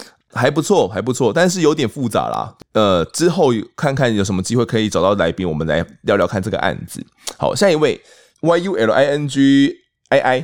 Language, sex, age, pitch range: Chinese, male, 20-39, 95-135 Hz